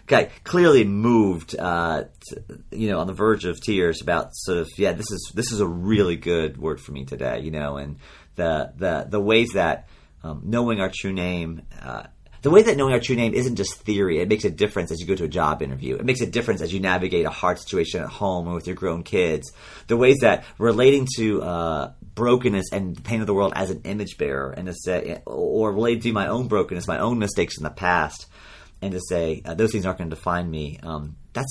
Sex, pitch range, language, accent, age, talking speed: male, 80-105 Hz, English, American, 40-59, 235 wpm